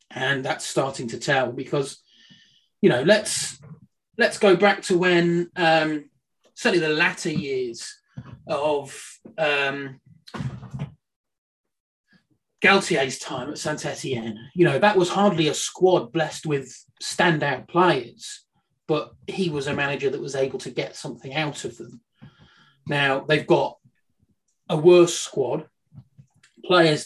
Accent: British